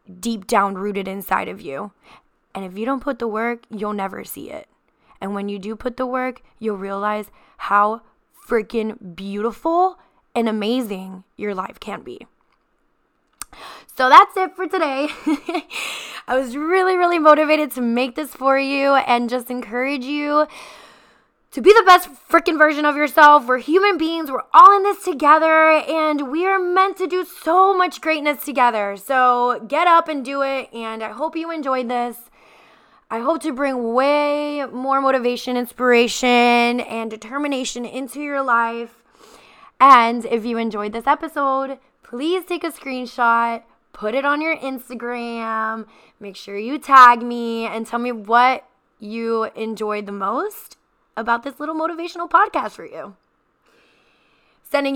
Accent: American